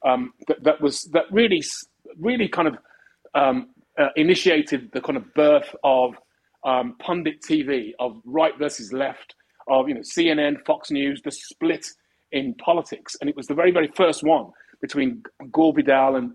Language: English